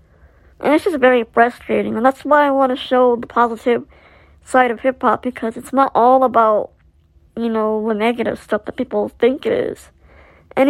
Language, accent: English, American